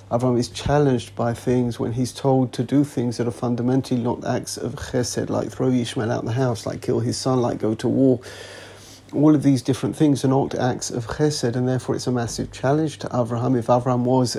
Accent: British